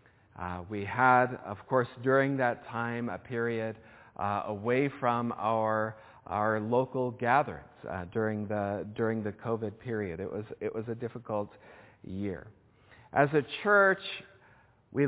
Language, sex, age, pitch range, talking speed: English, male, 50-69, 110-135 Hz, 140 wpm